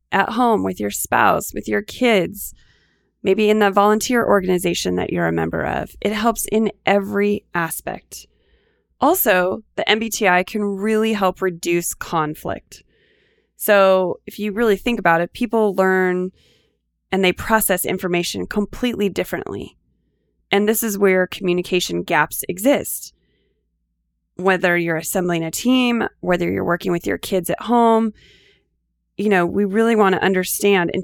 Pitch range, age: 175-210 Hz, 20-39